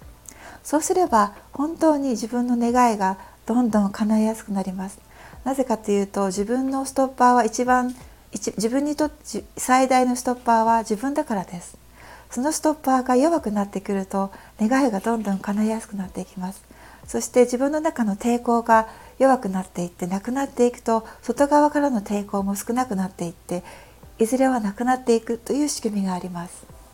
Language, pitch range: Japanese, 200-255 Hz